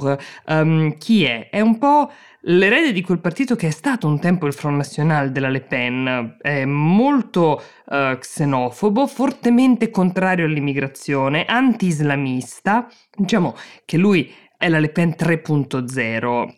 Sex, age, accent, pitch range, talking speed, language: female, 20-39, native, 140-195 Hz, 135 wpm, Italian